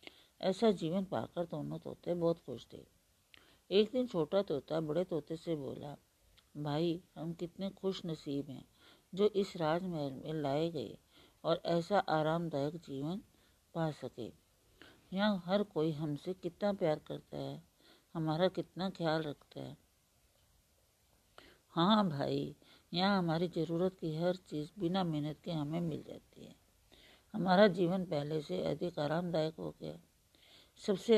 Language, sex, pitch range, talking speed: Hindi, female, 150-180 Hz, 135 wpm